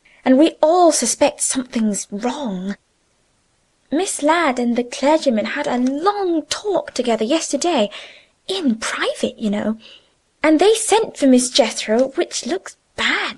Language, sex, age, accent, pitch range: Chinese, female, 20-39, British, 215-310 Hz